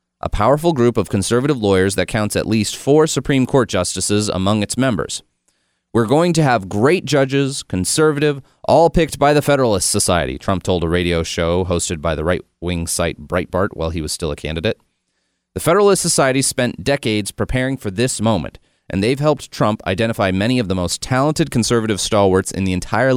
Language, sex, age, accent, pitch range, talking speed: English, male, 30-49, American, 95-135 Hz, 185 wpm